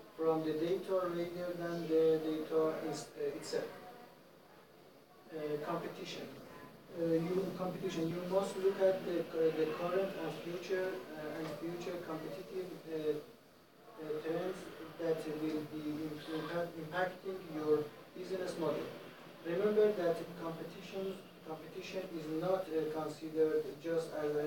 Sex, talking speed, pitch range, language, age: male, 125 wpm, 155-180 Hz, English, 40-59